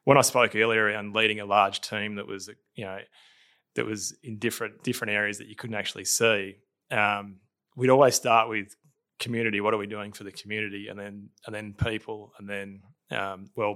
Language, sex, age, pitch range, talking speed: English, male, 20-39, 100-115 Hz, 195 wpm